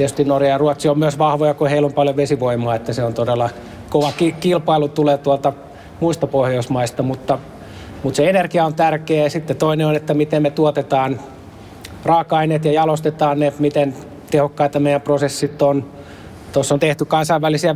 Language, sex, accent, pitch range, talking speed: Finnish, male, native, 135-155 Hz, 160 wpm